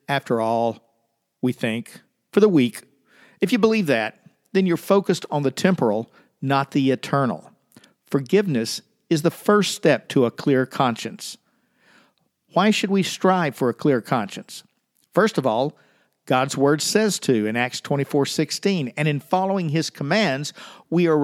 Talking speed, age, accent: 155 wpm, 50-69, American